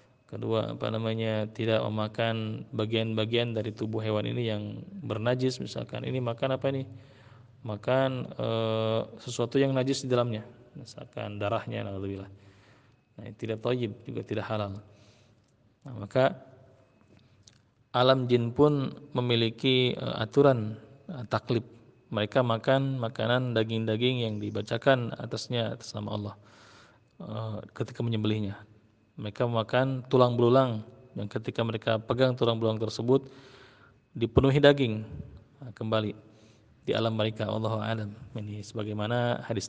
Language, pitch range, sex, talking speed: Malay, 110-125 Hz, male, 120 wpm